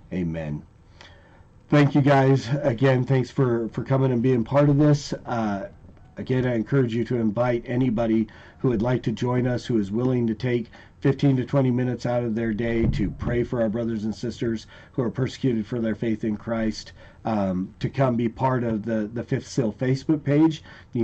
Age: 40-59